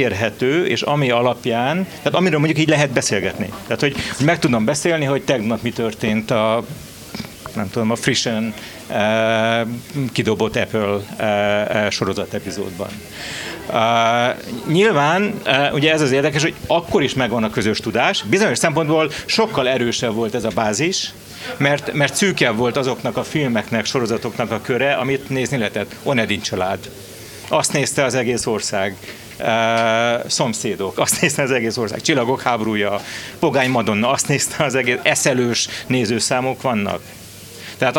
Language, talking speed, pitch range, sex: Hungarian, 145 wpm, 110-145 Hz, male